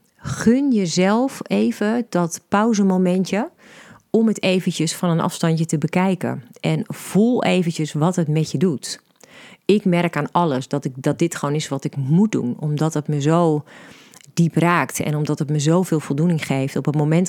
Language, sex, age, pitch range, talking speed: Dutch, female, 40-59, 150-190 Hz, 175 wpm